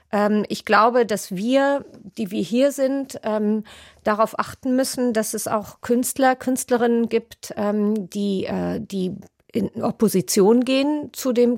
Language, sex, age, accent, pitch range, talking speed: German, female, 40-59, German, 205-240 Hz, 140 wpm